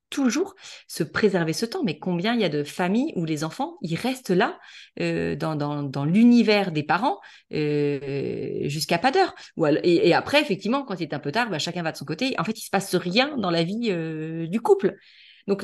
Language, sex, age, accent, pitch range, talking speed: French, female, 30-49, French, 165-220 Hz, 225 wpm